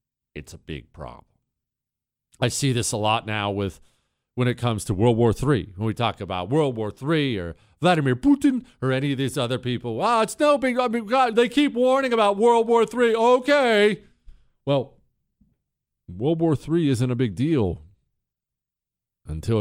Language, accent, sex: English, American, male